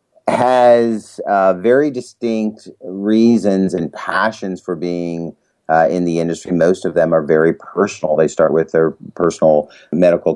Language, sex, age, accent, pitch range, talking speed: English, male, 40-59, American, 85-95 Hz, 145 wpm